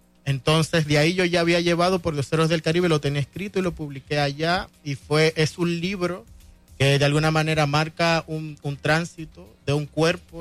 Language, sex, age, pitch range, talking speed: Spanish, male, 30-49, 135-160 Hz, 200 wpm